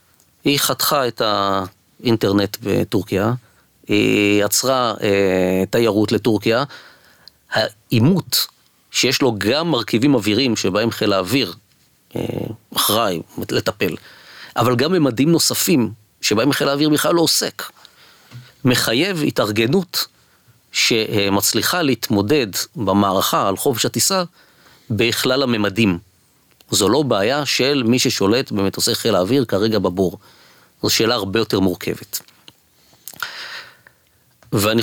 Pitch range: 100-125 Hz